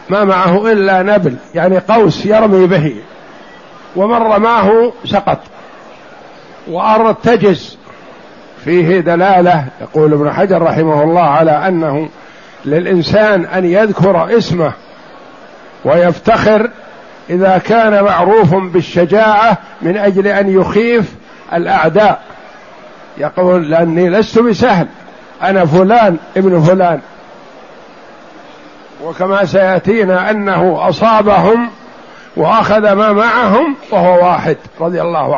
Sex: male